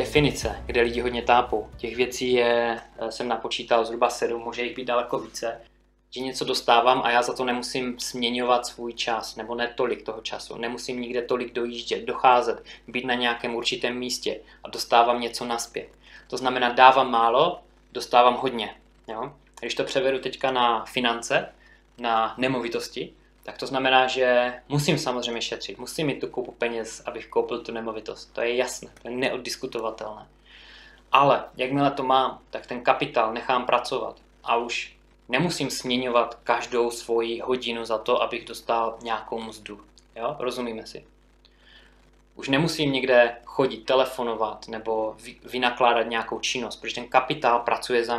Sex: male